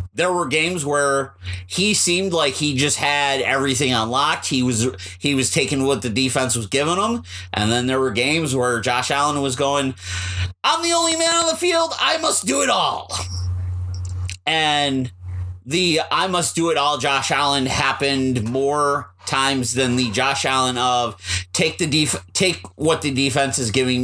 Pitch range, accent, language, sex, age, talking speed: 95-150 Hz, American, English, male, 30-49, 175 wpm